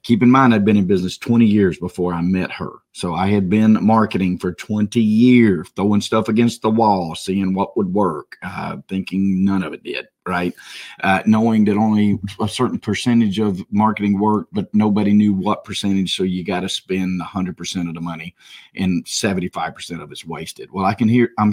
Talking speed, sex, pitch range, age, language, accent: 205 wpm, male, 95-115 Hz, 40-59, English, American